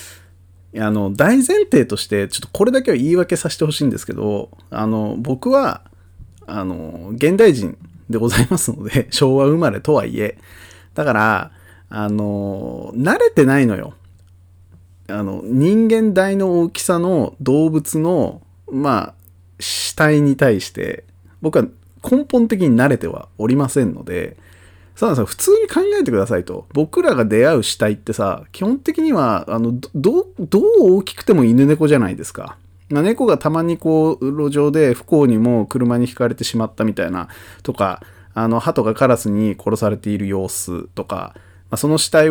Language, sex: Japanese, male